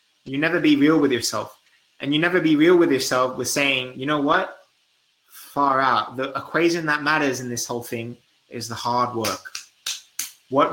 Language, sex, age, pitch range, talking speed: English, male, 20-39, 125-160 Hz, 185 wpm